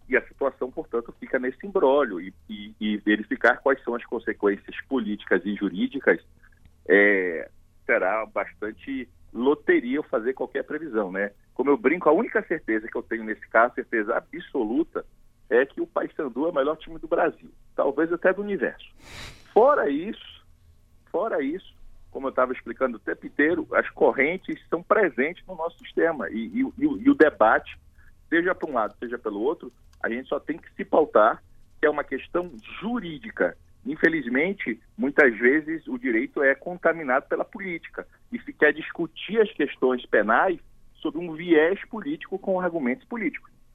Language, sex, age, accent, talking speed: Portuguese, male, 40-59, Brazilian, 165 wpm